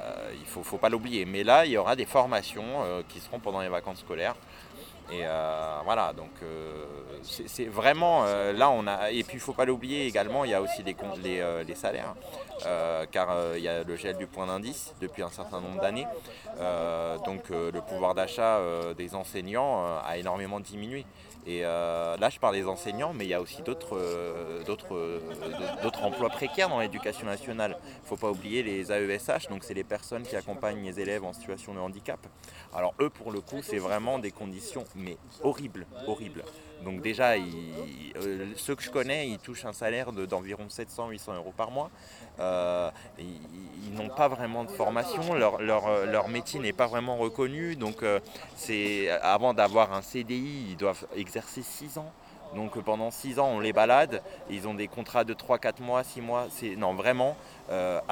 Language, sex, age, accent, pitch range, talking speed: French, male, 20-39, French, 90-115 Hz, 180 wpm